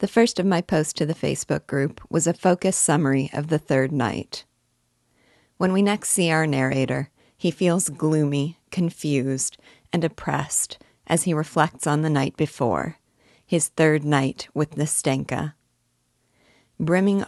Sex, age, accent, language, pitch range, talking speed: female, 40-59, American, English, 140-170 Hz, 145 wpm